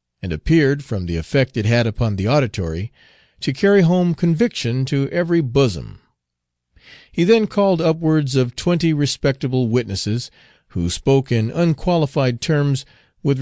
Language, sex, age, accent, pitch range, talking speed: English, male, 50-69, American, 110-155 Hz, 140 wpm